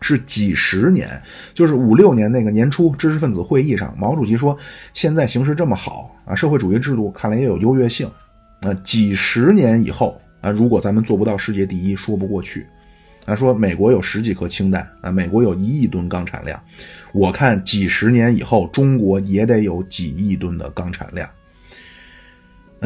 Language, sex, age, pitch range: Chinese, male, 30-49, 100-130 Hz